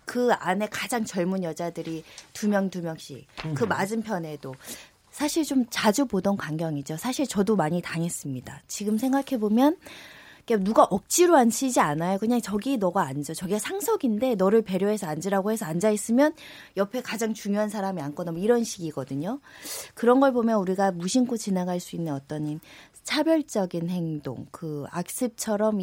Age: 20-39